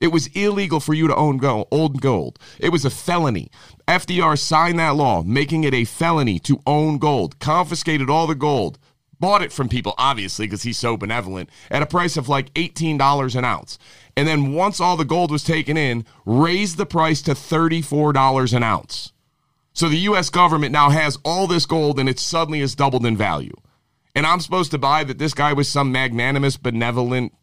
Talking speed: 190 wpm